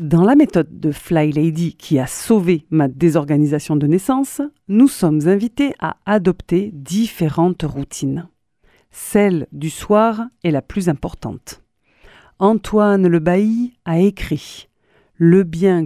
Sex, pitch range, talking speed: female, 160-220 Hz, 130 wpm